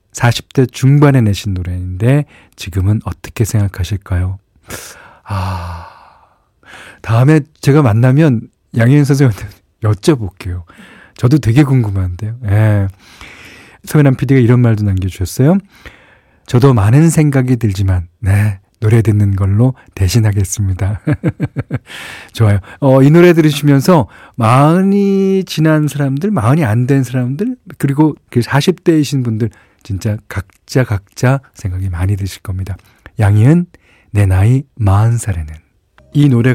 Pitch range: 95-135 Hz